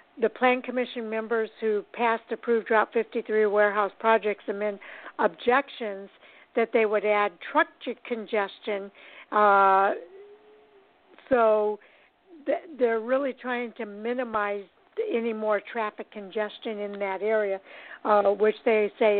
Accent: American